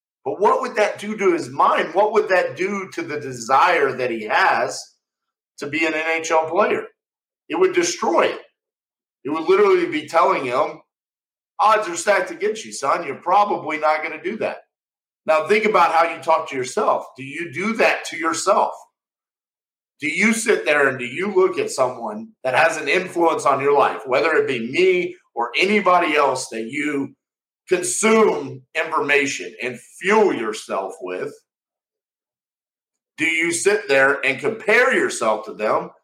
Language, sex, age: English, male, 50-69